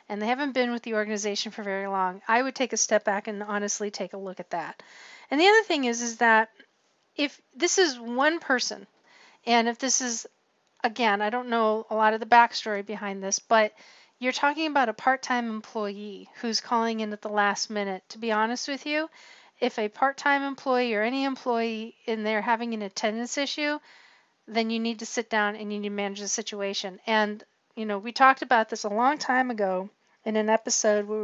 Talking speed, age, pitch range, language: 210 wpm, 40-59, 210-250 Hz, English